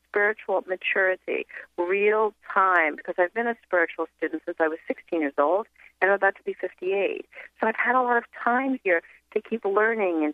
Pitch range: 180-235 Hz